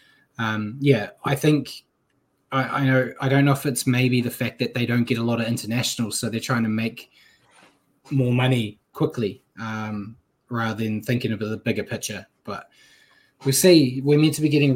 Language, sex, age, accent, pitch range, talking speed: English, male, 20-39, Australian, 115-140 Hz, 190 wpm